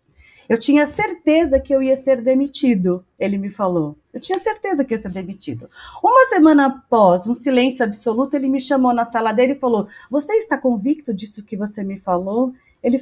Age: 30-49